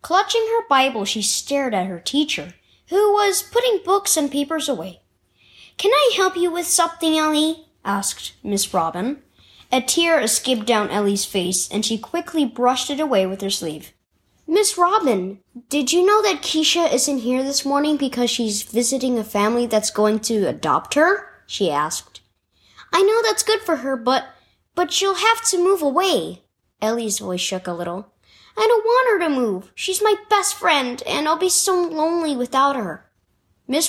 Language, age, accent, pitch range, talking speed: English, 20-39, American, 210-340 Hz, 175 wpm